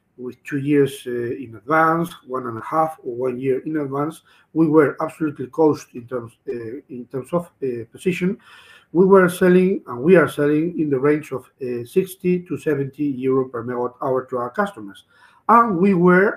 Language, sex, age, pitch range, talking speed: English, male, 50-69, 135-180 Hz, 190 wpm